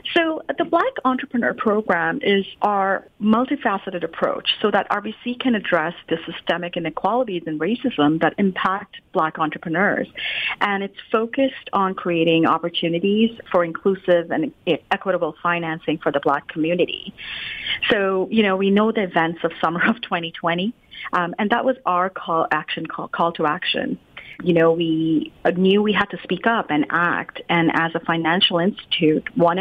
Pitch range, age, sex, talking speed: 160-200 Hz, 30-49, female, 155 wpm